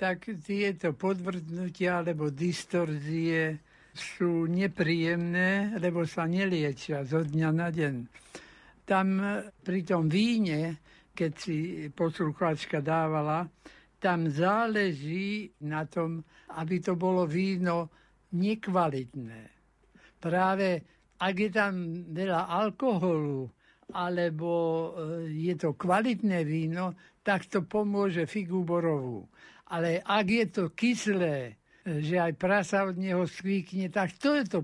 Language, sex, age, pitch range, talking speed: Slovak, male, 60-79, 160-195 Hz, 105 wpm